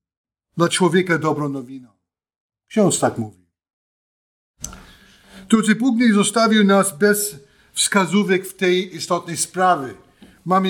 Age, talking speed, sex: 50-69, 105 wpm, male